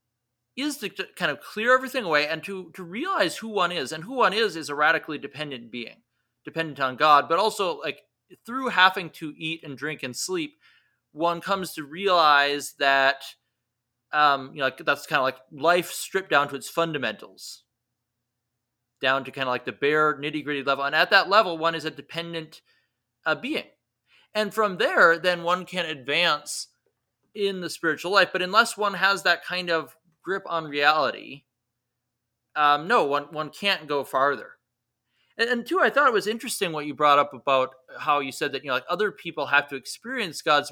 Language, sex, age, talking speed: English, male, 30-49, 185 wpm